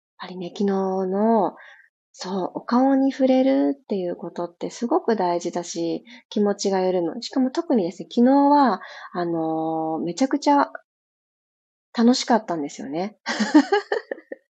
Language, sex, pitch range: Japanese, female, 180-245 Hz